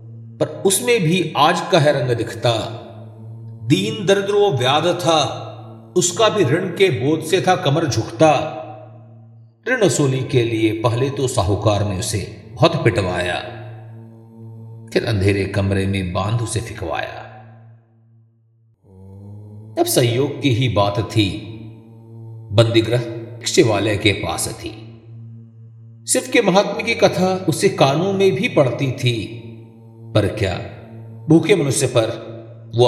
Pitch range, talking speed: 110-130 Hz, 120 wpm